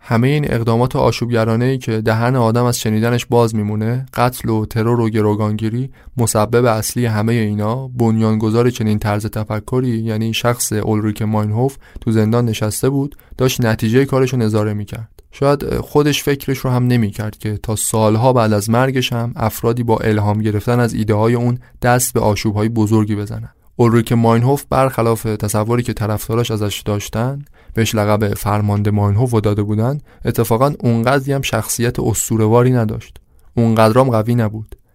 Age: 20-39